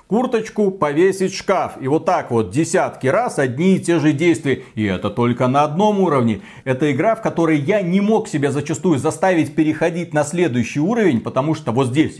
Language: Russian